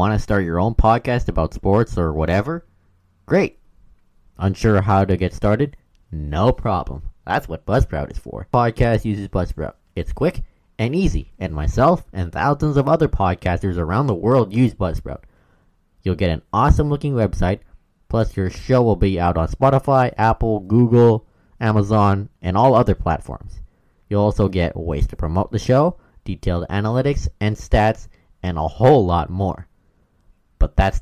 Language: English